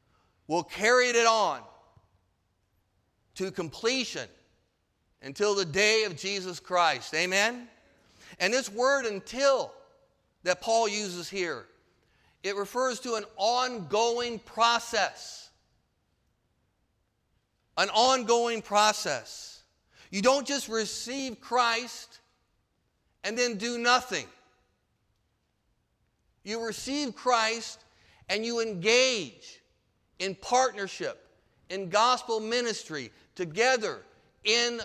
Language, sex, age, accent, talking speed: English, male, 50-69, American, 90 wpm